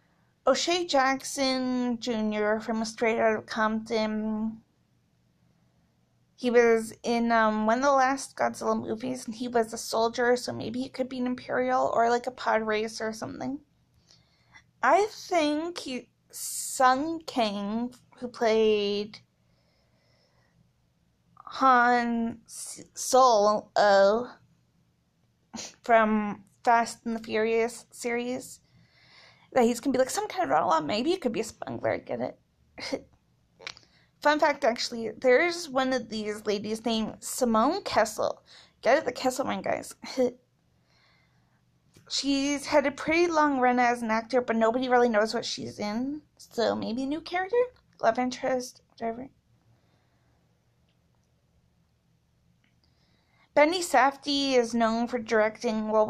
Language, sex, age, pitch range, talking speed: English, female, 20-39, 220-260 Hz, 125 wpm